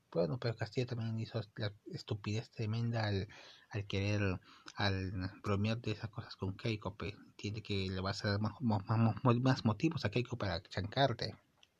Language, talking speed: Spanish, 170 wpm